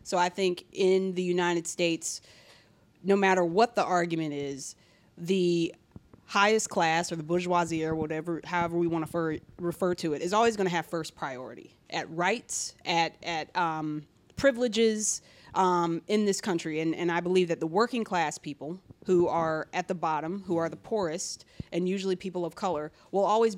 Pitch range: 165-195 Hz